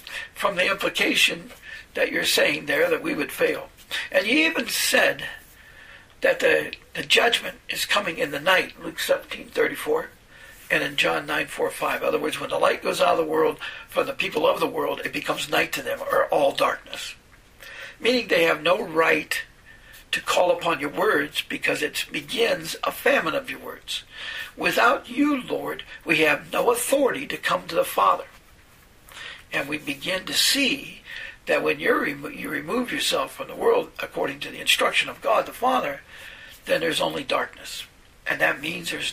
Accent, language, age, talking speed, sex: American, English, 60-79, 175 wpm, male